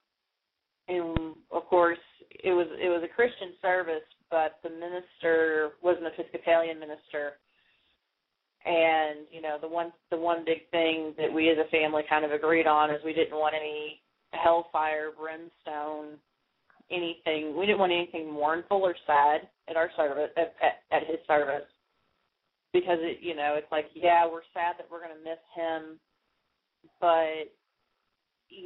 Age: 30-49